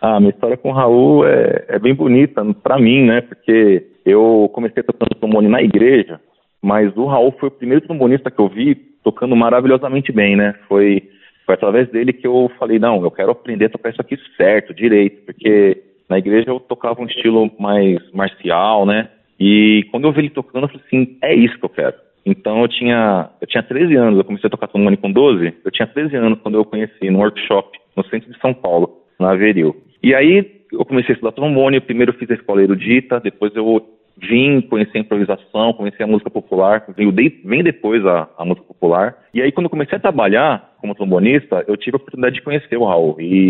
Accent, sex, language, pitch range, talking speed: Brazilian, male, Portuguese, 100-130 Hz, 215 wpm